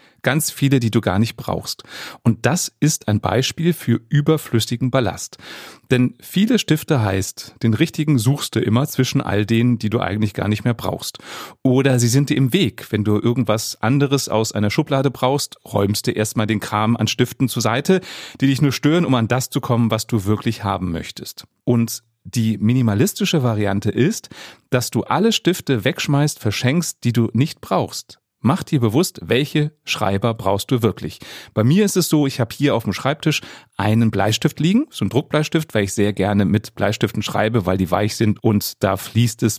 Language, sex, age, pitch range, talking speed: German, male, 30-49, 105-145 Hz, 190 wpm